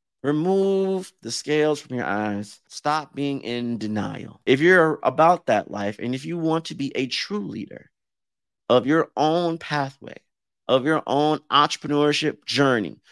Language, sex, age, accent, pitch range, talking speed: English, male, 30-49, American, 105-150 Hz, 150 wpm